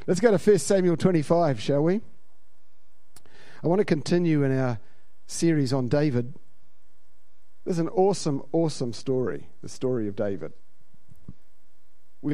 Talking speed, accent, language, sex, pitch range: 130 wpm, Australian, English, male, 125-180 Hz